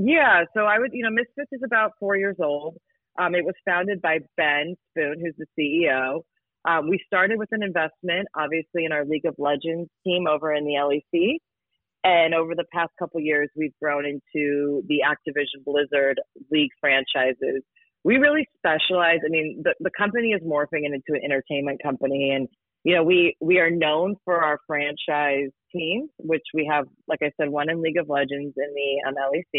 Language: English